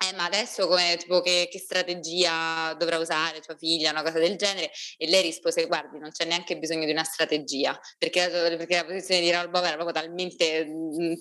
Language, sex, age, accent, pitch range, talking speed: Italian, female, 20-39, native, 150-180 Hz, 205 wpm